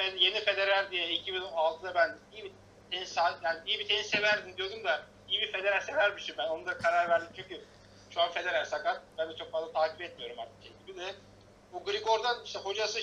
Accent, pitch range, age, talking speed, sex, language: native, 155-205 Hz, 50-69, 200 wpm, male, Turkish